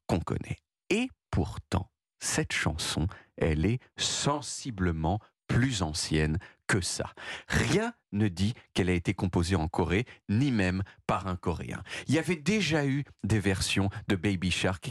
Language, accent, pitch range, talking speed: French, French, 95-130 Hz, 150 wpm